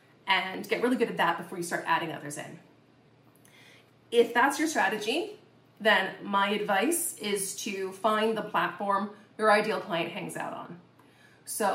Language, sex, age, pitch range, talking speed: English, female, 30-49, 190-230 Hz, 160 wpm